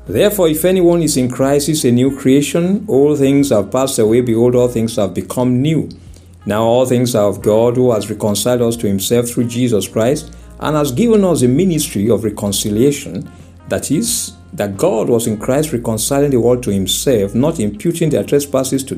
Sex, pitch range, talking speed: male, 95-140 Hz, 190 wpm